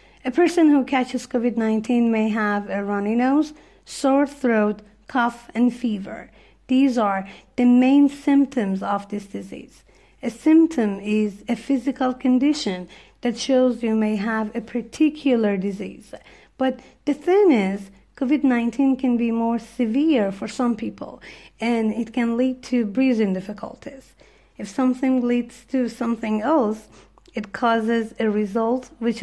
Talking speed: 140 wpm